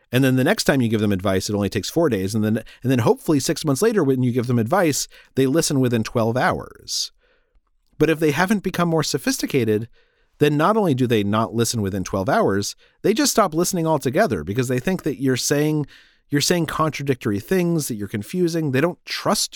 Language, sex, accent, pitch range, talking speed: English, male, American, 115-165 Hz, 215 wpm